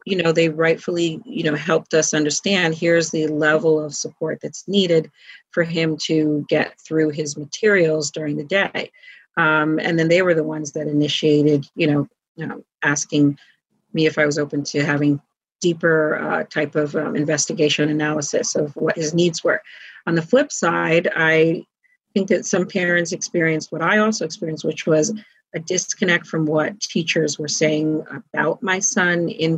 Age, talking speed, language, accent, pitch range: 40-59, 170 wpm, English, American, 155-175 Hz